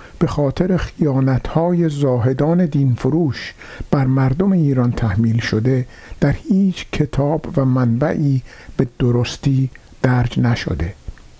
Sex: male